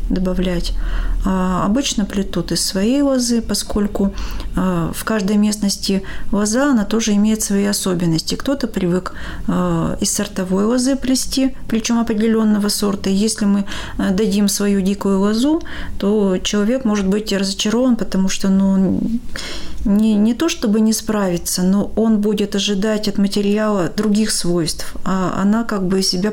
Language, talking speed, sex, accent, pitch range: Russian, 135 wpm, female, native, 185-220 Hz